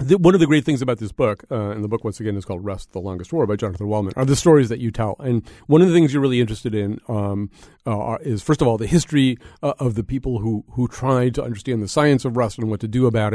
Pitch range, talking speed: 110-145 Hz, 290 wpm